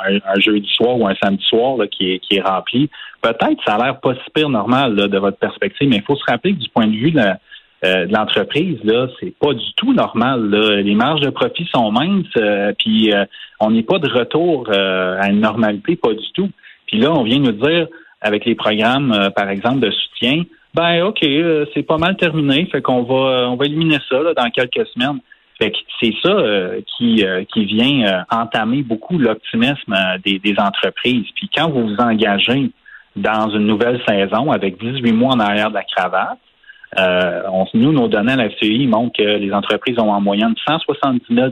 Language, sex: French, male